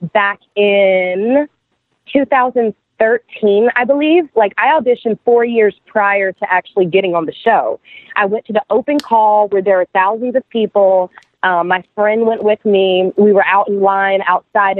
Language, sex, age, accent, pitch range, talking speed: English, female, 20-39, American, 180-215 Hz, 165 wpm